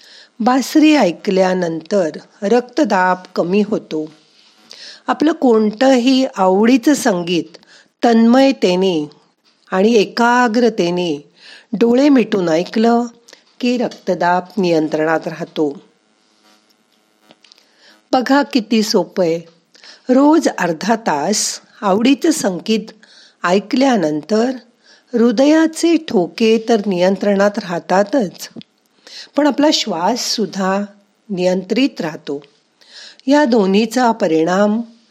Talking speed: 60 wpm